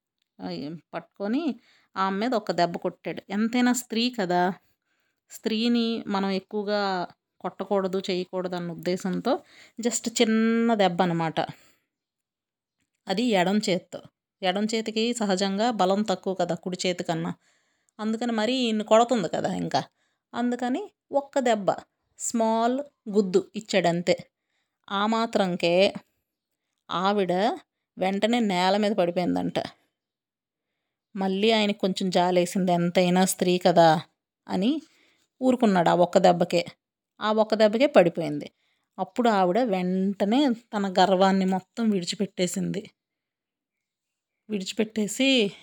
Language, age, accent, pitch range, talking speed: Telugu, 30-49, native, 185-220 Hz, 95 wpm